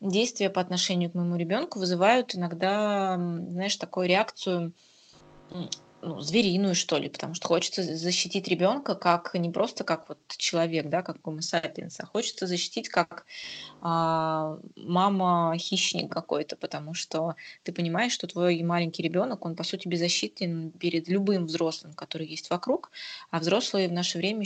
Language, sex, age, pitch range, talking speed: Russian, female, 20-39, 165-190 Hz, 150 wpm